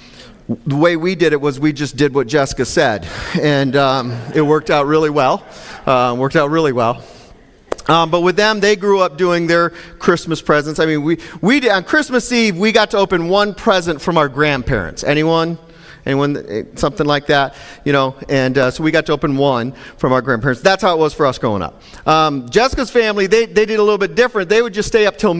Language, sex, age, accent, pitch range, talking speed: English, male, 40-59, American, 150-210 Hz, 220 wpm